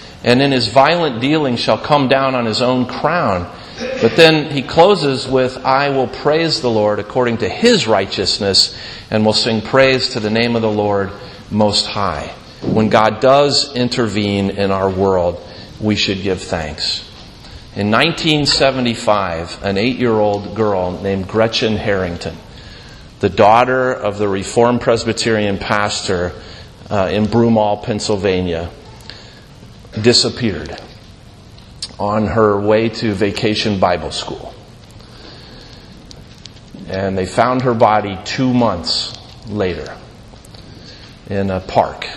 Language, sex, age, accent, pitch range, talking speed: English, male, 40-59, American, 100-120 Hz, 120 wpm